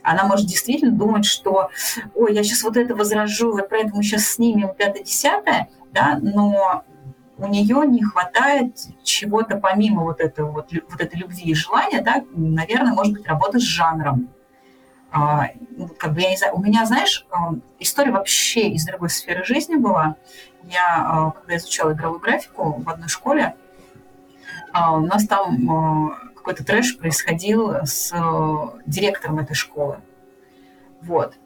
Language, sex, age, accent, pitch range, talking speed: Russian, female, 30-49, native, 155-215 Hz, 140 wpm